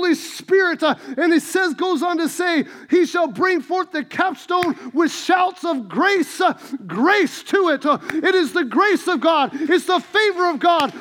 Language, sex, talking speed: English, male, 175 wpm